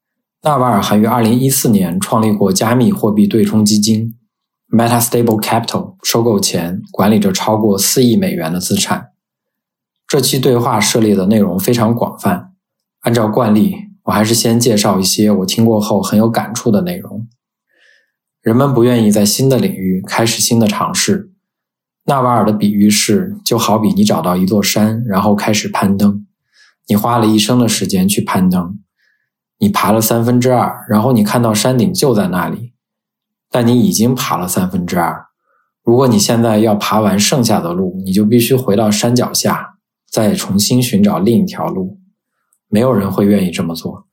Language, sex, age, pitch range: Chinese, male, 20-39, 105-130 Hz